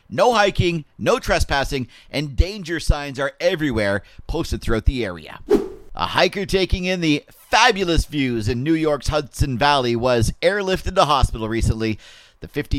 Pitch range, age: 125-170 Hz, 50-69